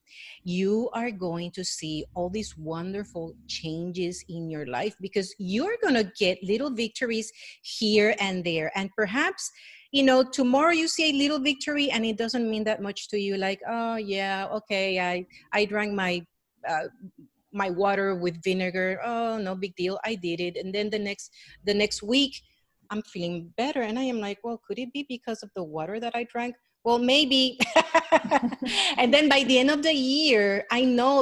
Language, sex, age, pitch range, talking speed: English, female, 40-59, 180-240 Hz, 185 wpm